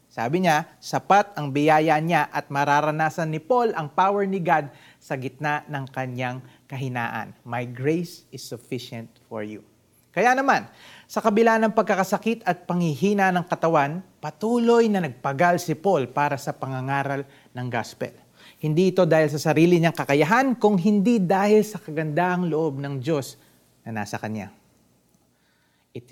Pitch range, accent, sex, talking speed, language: 125-175 Hz, native, male, 145 wpm, Filipino